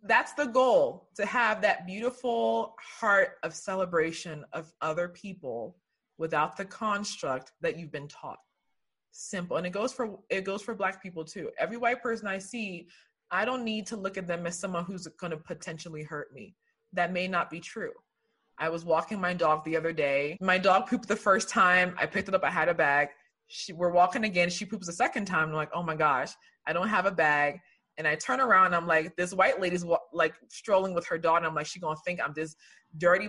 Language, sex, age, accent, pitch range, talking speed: English, female, 20-39, American, 165-240 Hz, 220 wpm